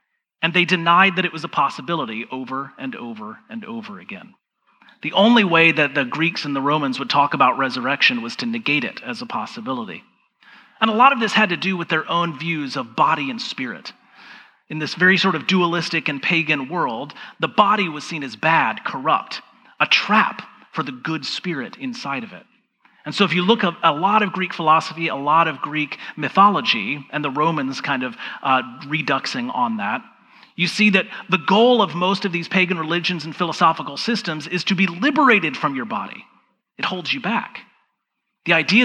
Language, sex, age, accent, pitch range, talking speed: English, male, 30-49, American, 155-210 Hz, 195 wpm